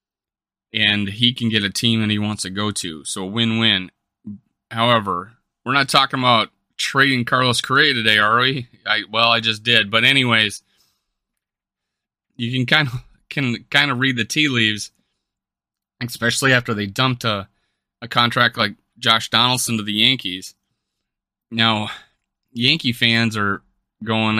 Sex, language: male, English